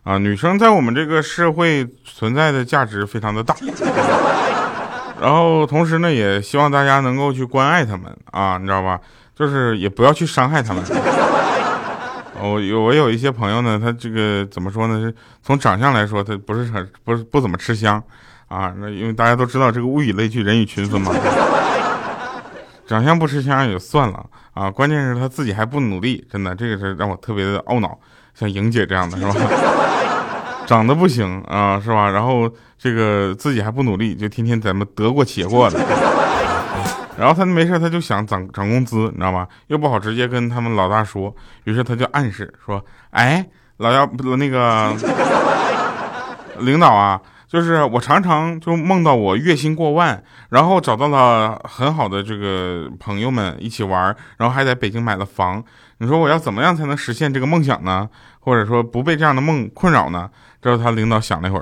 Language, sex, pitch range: Chinese, male, 100-140 Hz